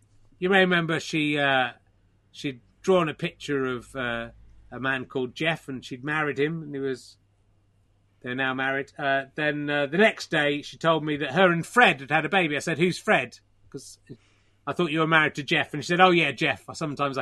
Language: English